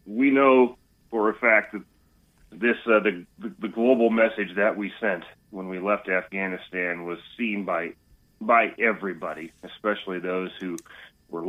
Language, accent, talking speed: English, American, 145 wpm